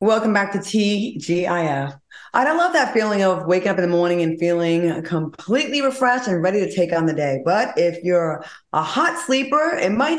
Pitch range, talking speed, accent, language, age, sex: 170-255 Hz, 195 wpm, American, English, 20-39, female